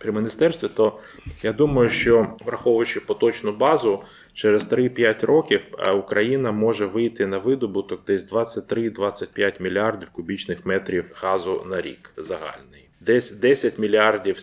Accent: native